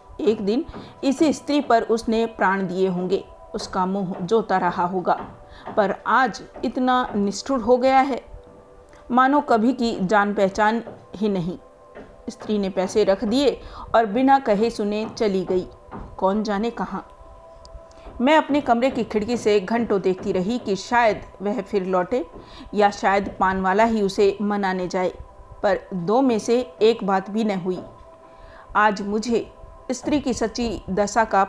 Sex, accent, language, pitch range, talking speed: female, native, Hindi, 190-235 Hz, 150 wpm